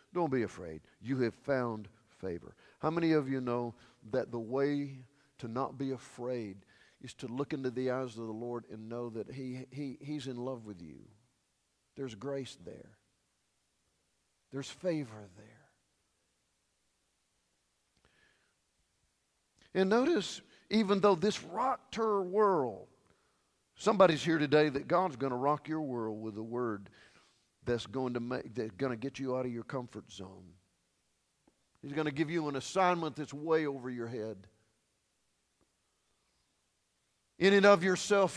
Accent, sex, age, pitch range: American, male, 50-69, 115-165 Hz